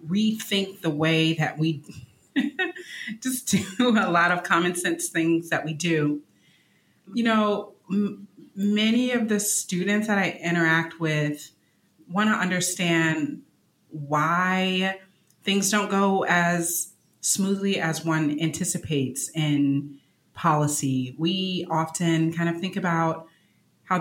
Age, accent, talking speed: 30-49, American, 115 wpm